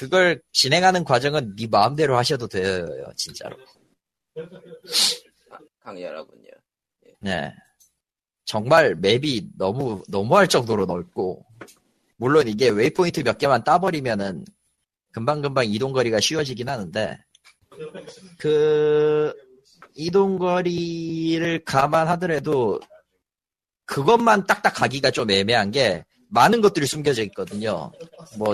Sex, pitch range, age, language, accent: male, 115-180 Hz, 30-49, Korean, native